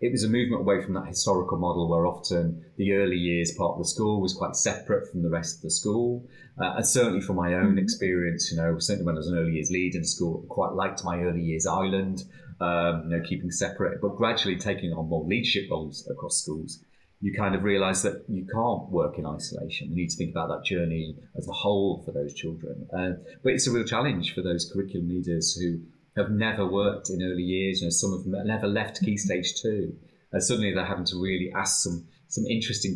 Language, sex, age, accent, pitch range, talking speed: English, male, 30-49, British, 85-100 Hz, 230 wpm